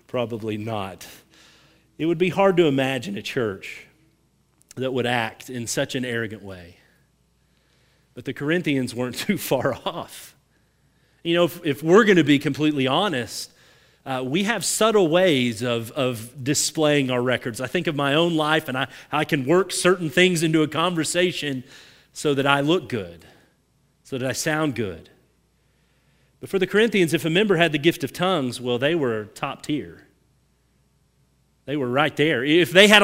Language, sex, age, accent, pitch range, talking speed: English, male, 40-59, American, 140-185 Hz, 175 wpm